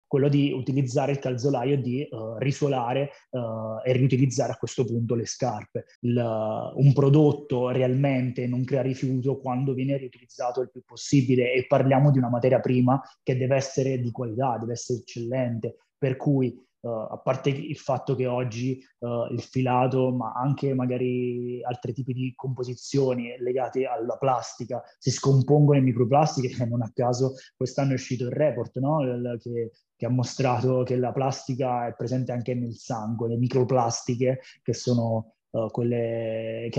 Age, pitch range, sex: 20-39, 120-135 Hz, male